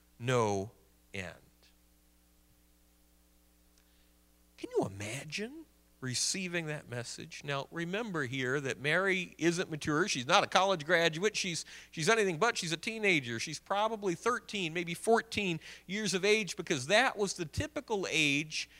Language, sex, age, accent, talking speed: English, male, 40-59, American, 130 wpm